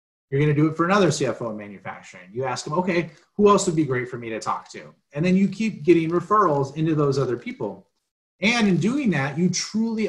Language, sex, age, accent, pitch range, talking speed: English, male, 30-49, American, 145-185 Hz, 240 wpm